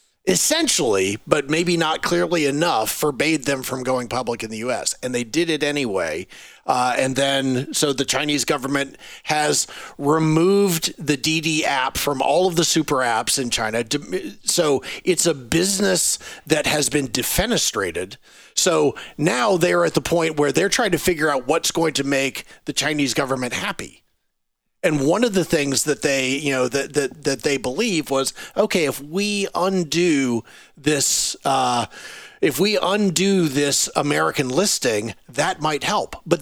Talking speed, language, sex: 160 wpm, English, male